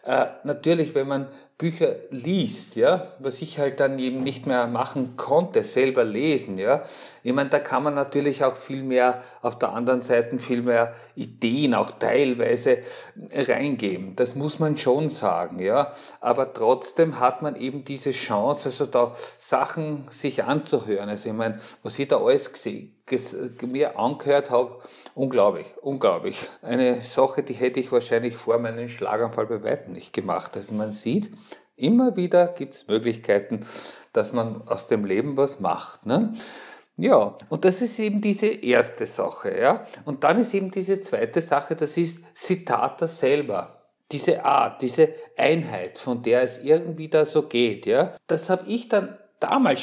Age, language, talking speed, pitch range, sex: 50-69, German, 165 wpm, 130-200 Hz, male